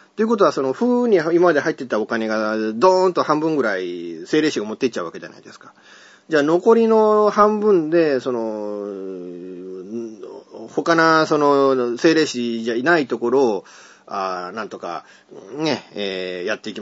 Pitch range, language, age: 125-200 Hz, Japanese, 30-49